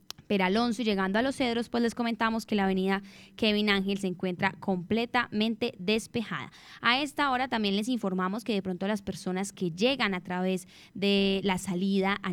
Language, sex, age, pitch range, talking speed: Spanish, female, 10-29, 190-235 Hz, 180 wpm